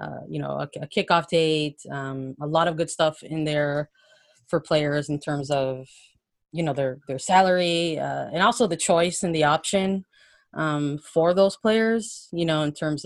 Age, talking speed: 30-49, 190 wpm